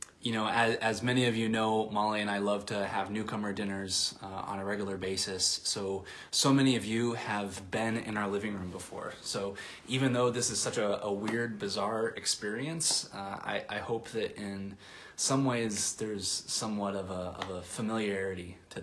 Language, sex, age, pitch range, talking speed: English, male, 20-39, 95-110 Hz, 190 wpm